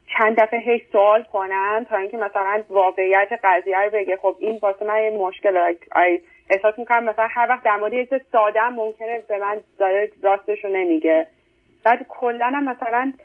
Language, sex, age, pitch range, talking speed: Persian, female, 30-49, 205-245 Hz, 170 wpm